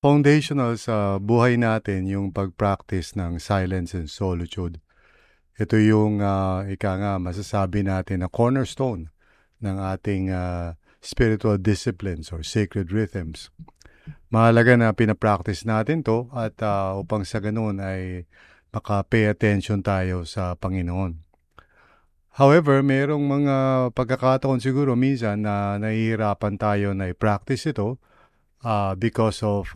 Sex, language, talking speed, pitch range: male, English, 115 wpm, 95-120 Hz